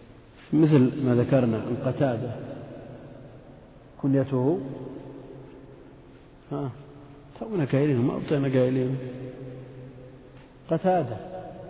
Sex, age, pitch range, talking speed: male, 50-69, 115-135 Hz, 60 wpm